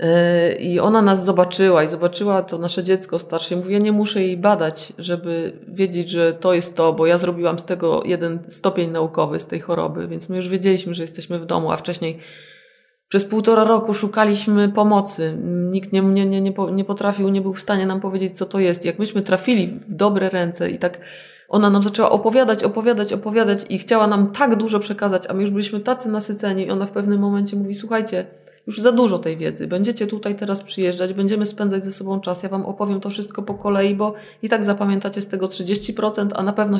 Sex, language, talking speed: female, Polish, 210 wpm